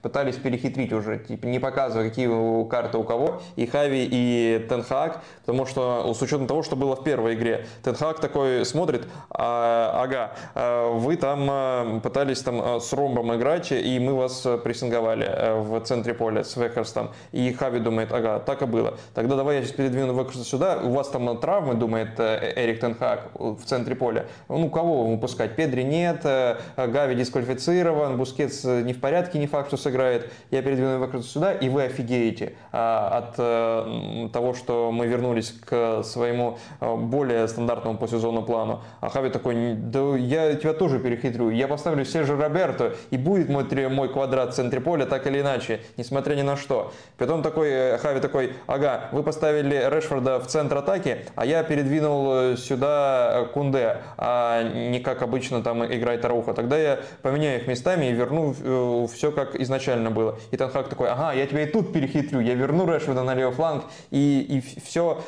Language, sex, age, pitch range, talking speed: Russian, male, 20-39, 120-140 Hz, 165 wpm